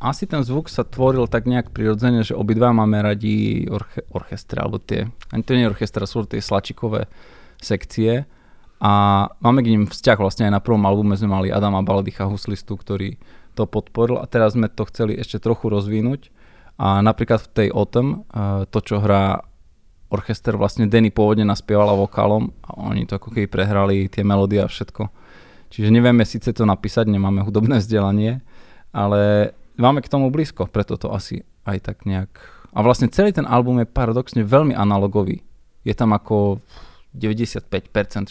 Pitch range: 100-115 Hz